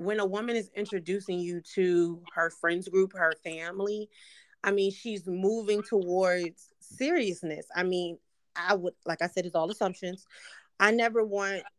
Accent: American